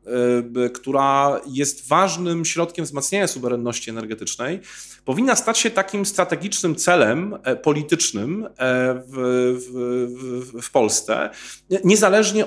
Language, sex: Polish, male